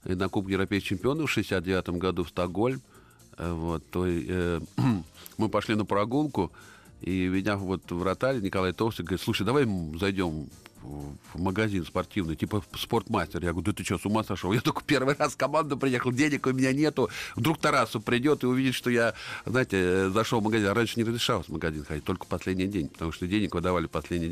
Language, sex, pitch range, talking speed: Russian, male, 95-135 Hz, 195 wpm